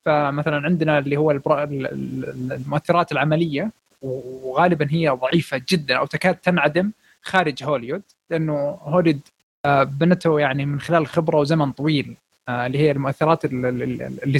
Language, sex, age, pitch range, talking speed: Arabic, male, 20-39, 145-185 Hz, 115 wpm